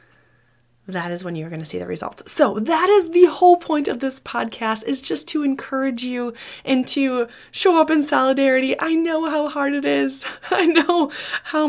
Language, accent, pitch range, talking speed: English, American, 180-270 Hz, 195 wpm